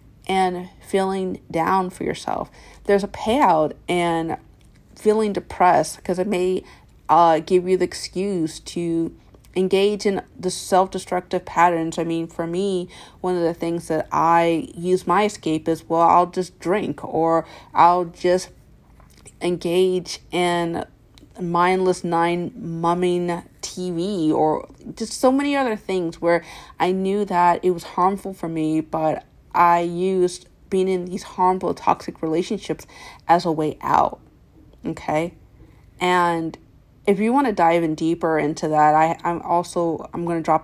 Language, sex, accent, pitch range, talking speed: English, female, American, 160-185 Hz, 145 wpm